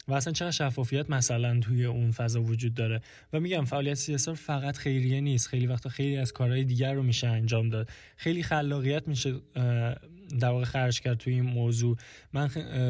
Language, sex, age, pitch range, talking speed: Persian, male, 20-39, 115-135 Hz, 170 wpm